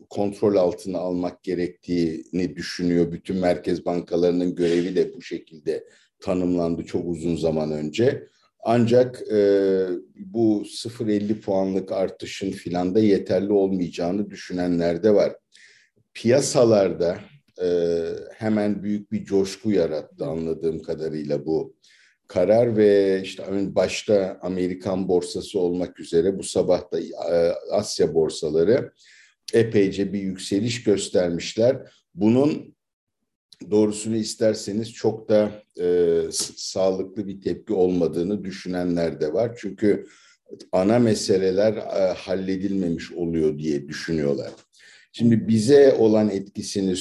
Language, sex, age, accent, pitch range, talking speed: Turkish, male, 50-69, native, 90-110 Hz, 100 wpm